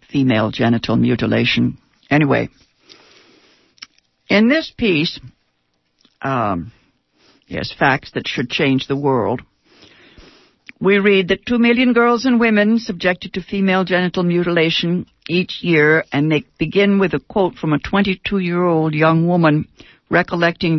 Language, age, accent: English, 60-79, American